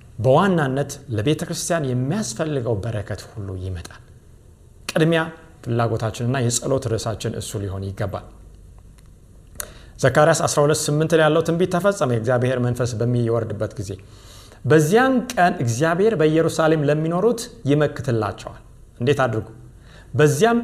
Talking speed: 95 wpm